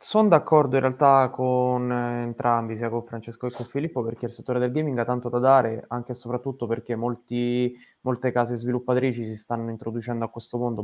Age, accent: 20-39, native